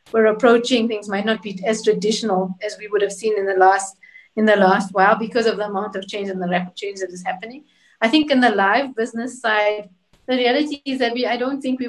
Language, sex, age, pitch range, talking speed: English, female, 30-49, 205-235 Hz, 245 wpm